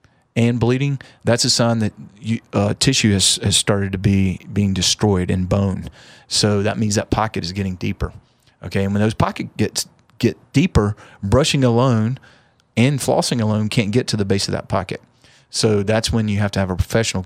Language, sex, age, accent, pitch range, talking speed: English, male, 40-59, American, 100-120 Hz, 190 wpm